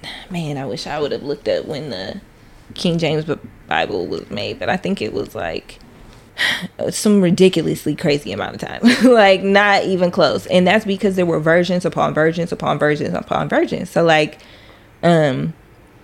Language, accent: English, American